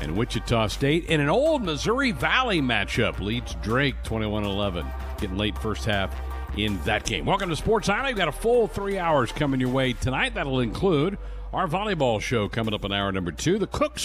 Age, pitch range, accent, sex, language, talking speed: 50-69, 95-130 Hz, American, male, English, 195 wpm